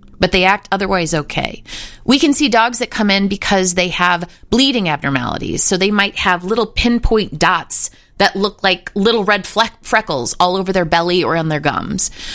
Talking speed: 190 wpm